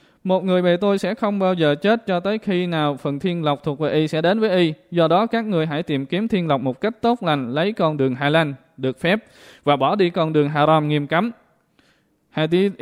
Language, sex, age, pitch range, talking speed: Vietnamese, male, 20-39, 150-180 Hz, 245 wpm